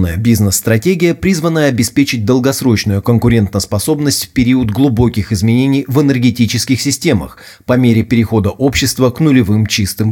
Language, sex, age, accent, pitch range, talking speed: Russian, male, 30-49, native, 110-135 Hz, 115 wpm